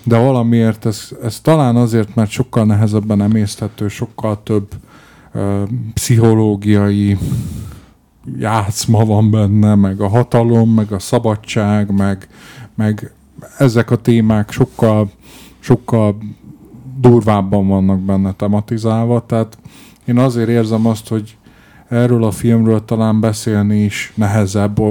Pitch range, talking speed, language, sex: 100-115 Hz, 110 wpm, Hungarian, male